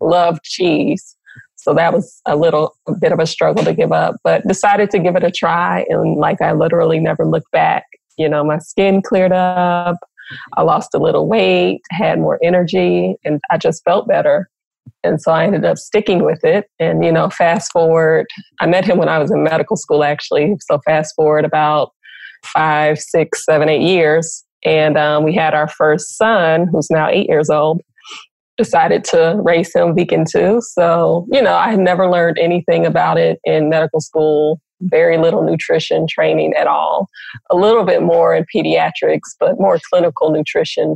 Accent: American